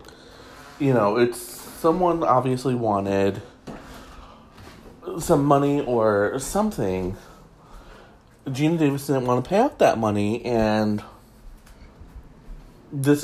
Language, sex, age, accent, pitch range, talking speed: English, male, 30-49, American, 115-170 Hz, 95 wpm